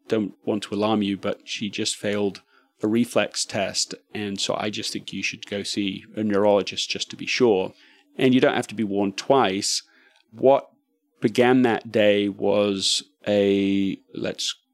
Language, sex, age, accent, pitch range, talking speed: English, male, 30-49, British, 100-120 Hz, 170 wpm